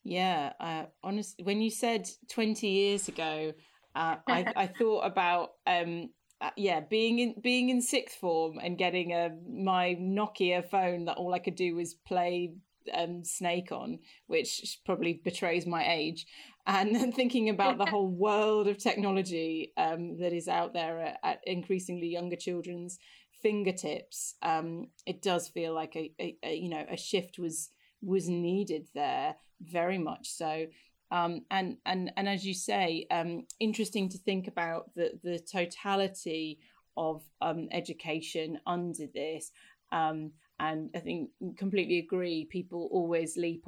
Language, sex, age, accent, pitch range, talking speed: English, female, 30-49, British, 165-195 Hz, 155 wpm